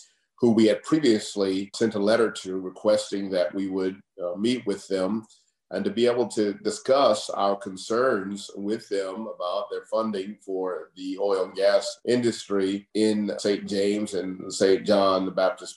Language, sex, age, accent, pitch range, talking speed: English, male, 50-69, American, 100-115 Hz, 165 wpm